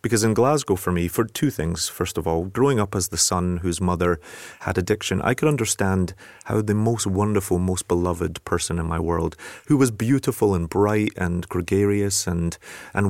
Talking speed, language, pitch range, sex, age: 190 wpm, Swedish, 90-115 Hz, male, 30-49